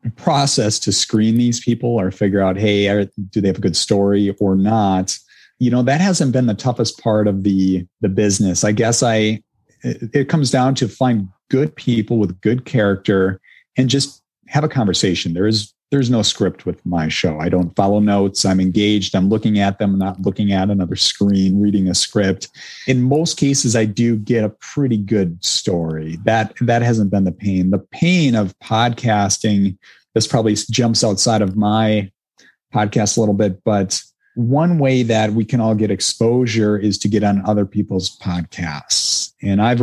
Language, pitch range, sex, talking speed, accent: English, 100-120 Hz, male, 180 wpm, American